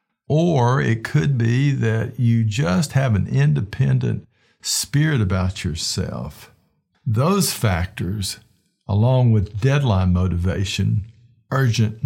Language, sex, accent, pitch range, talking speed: English, male, American, 100-130 Hz, 100 wpm